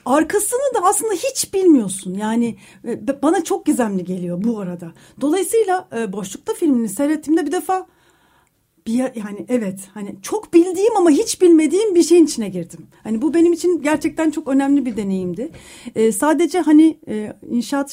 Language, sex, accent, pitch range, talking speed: Turkish, female, native, 220-320 Hz, 145 wpm